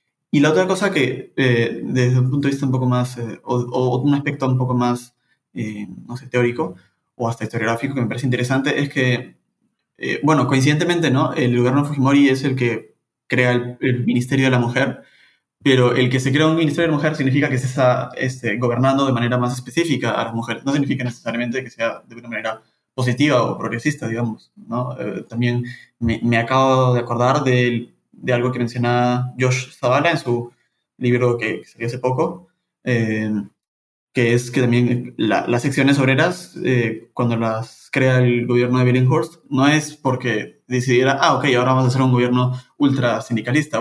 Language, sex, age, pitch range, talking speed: Spanish, male, 20-39, 120-135 Hz, 195 wpm